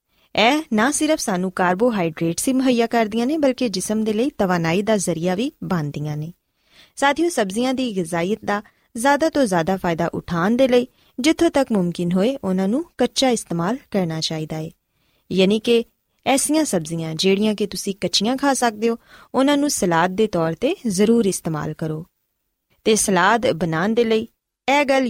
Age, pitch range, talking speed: 20-39, 180-255 Hz, 165 wpm